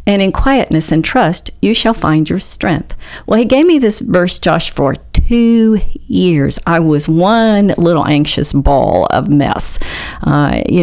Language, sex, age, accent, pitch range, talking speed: English, female, 40-59, American, 150-195 Hz, 165 wpm